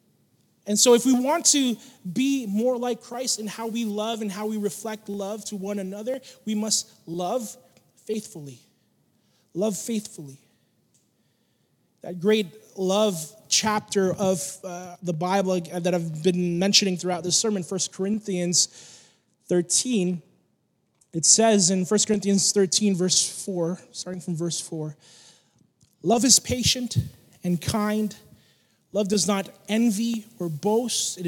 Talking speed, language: 135 wpm, English